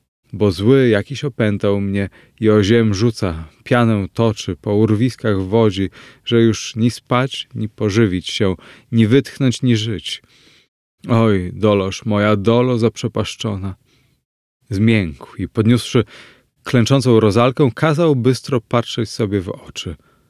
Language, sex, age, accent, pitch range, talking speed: Polish, male, 30-49, native, 95-120 Hz, 120 wpm